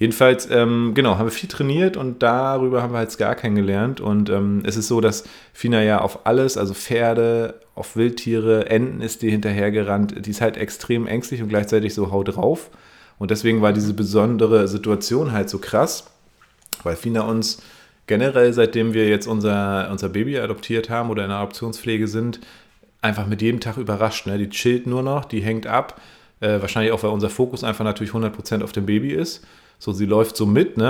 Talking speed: 190 wpm